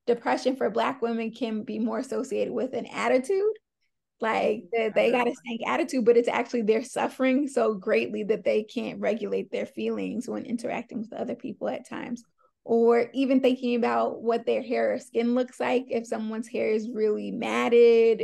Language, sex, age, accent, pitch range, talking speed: English, female, 20-39, American, 230-260 Hz, 180 wpm